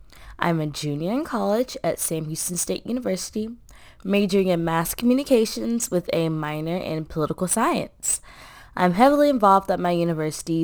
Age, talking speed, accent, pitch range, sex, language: 20-39, 145 wpm, American, 160-225 Hz, female, English